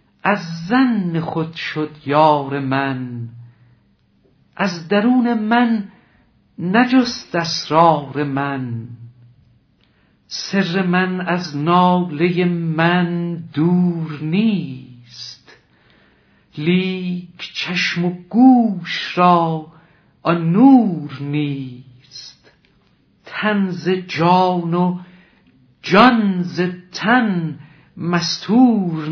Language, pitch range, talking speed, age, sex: Persian, 150-200 Hz, 70 wpm, 60-79, male